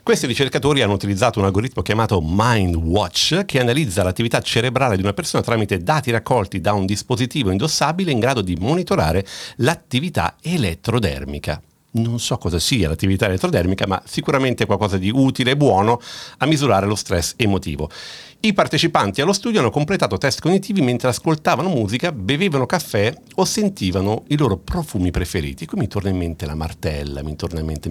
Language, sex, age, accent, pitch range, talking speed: Italian, male, 50-69, native, 90-140 Hz, 165 wpm